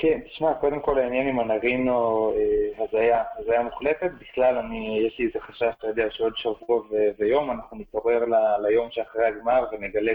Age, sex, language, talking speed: 20-39, male, Hebrew, 175 wpm